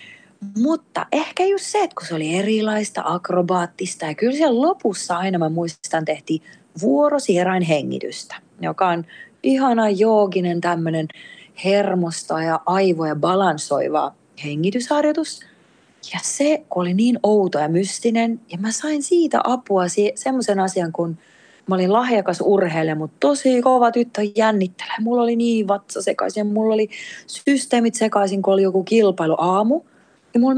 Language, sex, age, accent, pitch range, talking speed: Finnish, female, 30-49, native, 170-235 Hz, 135 wpm